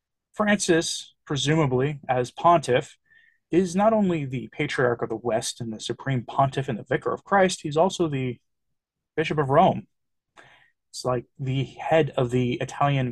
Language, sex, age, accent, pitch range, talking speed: English, male, 30-49, American, 130-185 Hz, 155 wpm